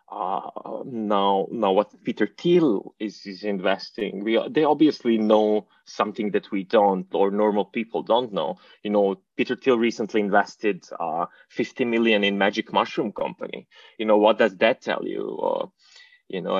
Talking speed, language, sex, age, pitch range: 165 wpm, English, male, 20-39, 100-140 Hz